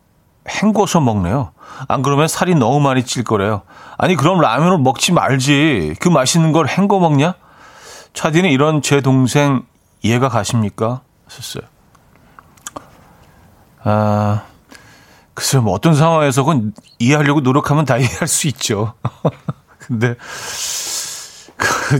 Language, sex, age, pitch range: Korean, male, 40-59, 115-155 Hz